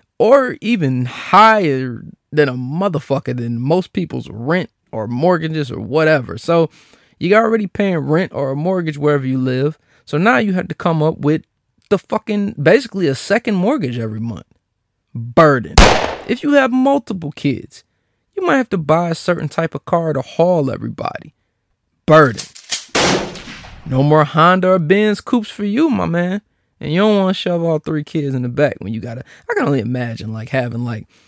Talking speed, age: 180 wpm, 20-39